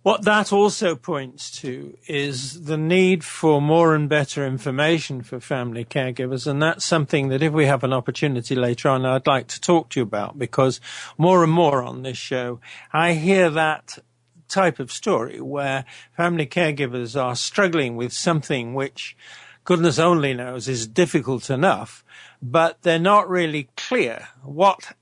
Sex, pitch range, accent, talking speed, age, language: male, 125-160 Hz, British, 160 wpm, 50-69, English